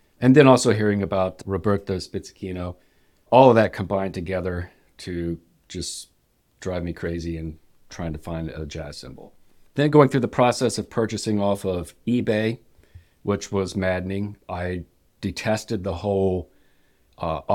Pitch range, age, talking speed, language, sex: 90-110 Hz, 50-69, 145 wpm, English, male